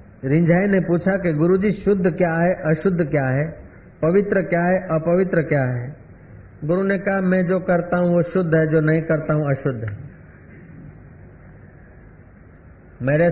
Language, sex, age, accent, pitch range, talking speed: Hindi, male, 50-69, native, 140-190 Hz, 155 wpm